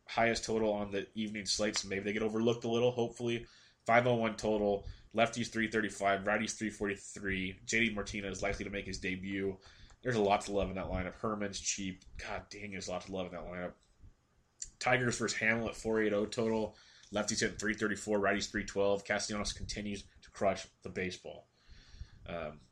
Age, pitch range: 20-39, 95-105 Hz